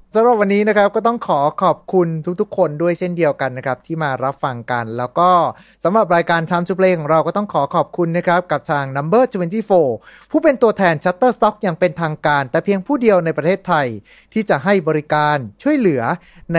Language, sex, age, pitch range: Thai, male, 30-49, 155-210 Hz